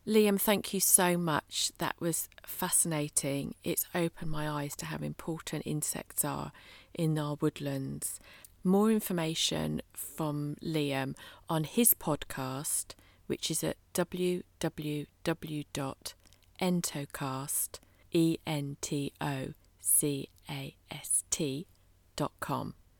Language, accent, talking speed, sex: English, British, 80 wpm, female